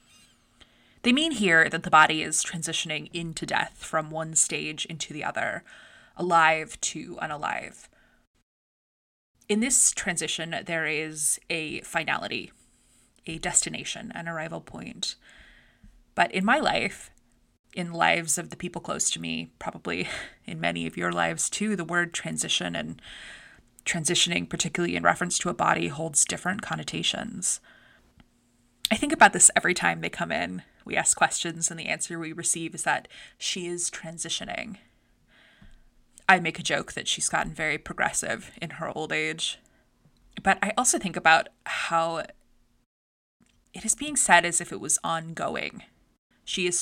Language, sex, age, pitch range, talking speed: English, female, 20-39, 155-180 Hz, 150 wpm